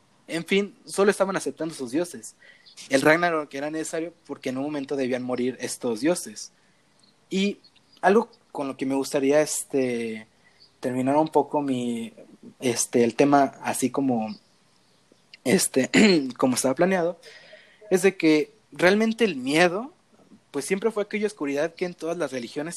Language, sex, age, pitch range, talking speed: Spanish, male, 20-39, 135-175 Hz, 150 wpm